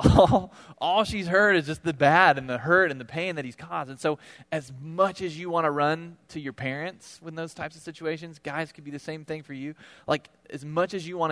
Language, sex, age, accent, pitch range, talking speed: English, male, 20-39, American, 125-160 Hz, 255 wpm